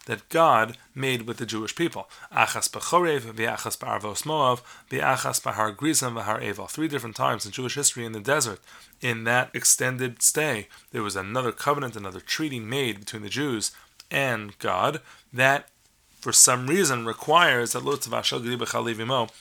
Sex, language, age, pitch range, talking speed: male, English, 30-49, 110-135 Hz, 120 wpm